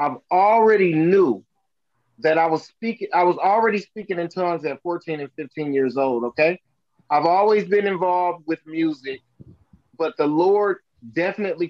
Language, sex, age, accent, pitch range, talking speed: English, male, 30-49, American, 160-205 Hz, 155 wpm